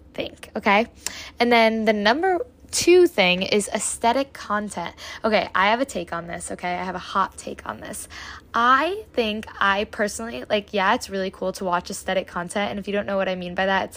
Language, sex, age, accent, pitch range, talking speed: English, female, 10-29, American, 185-220 Hz, 215 wpm